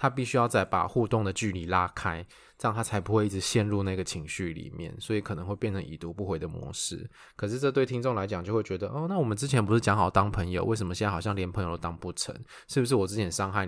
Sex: male